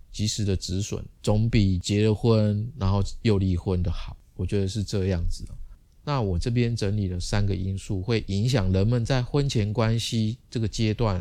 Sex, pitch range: male, 95-120 Hz